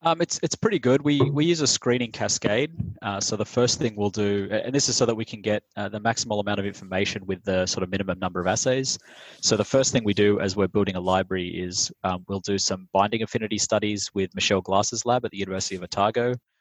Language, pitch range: English, 95-115 Hz